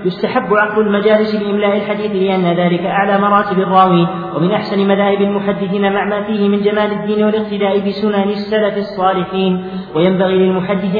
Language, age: Arabic, 40-59